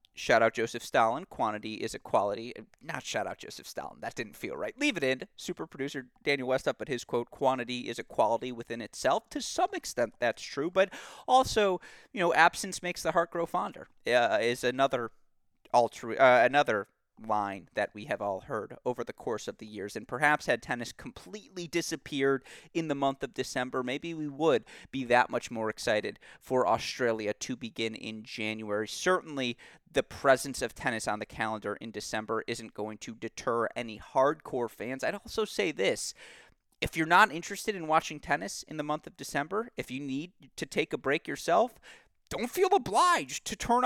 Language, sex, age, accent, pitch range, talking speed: English, male, 30-49, American, 120-175 Hz, 190 wpm